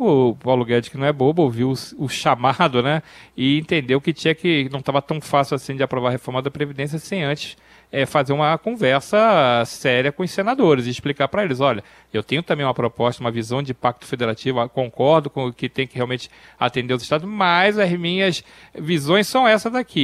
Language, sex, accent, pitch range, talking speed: Portuguese, male, Brazilian, 125-165 Hz, 205 wpm